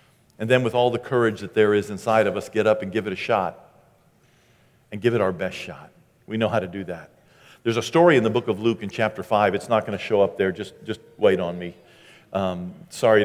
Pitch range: 105-120 Hz